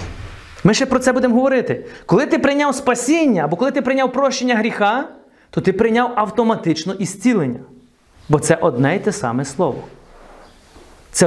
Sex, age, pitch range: male, 30-49, 165-265 Hz